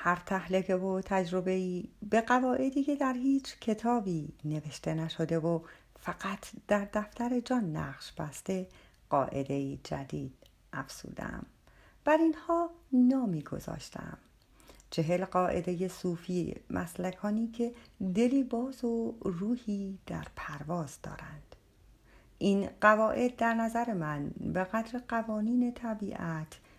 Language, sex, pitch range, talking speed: Persian, female, 165-235 Hz, 110 wpm